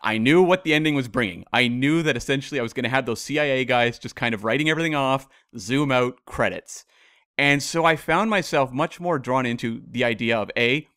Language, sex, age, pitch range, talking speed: English, male, 30-49, 120-170 Hz, 220 wpm